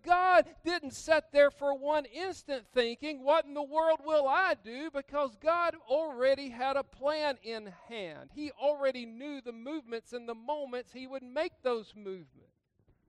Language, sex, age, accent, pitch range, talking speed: English, male, 50-69, American, 205-270 Hz, 165 wpm